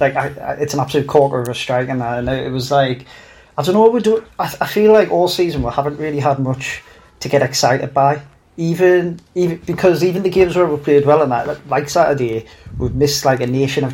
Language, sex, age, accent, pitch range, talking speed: English, male, 30-49, British, 130-155 Hz, 255 wpm